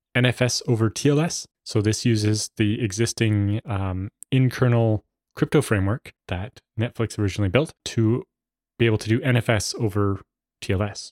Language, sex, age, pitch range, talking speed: English, male, 20-39, 105-130 Hz, 130 wpm